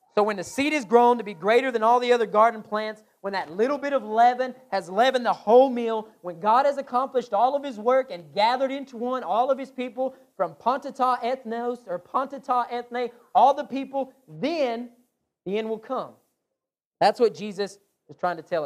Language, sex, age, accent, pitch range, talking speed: English, male, 30-49, American, 190-270 Hz, 205 wpm